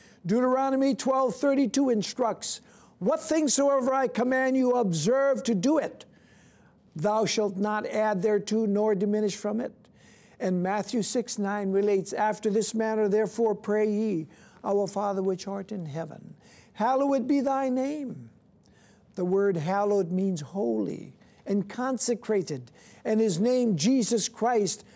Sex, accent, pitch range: male, American, 210-270 Hz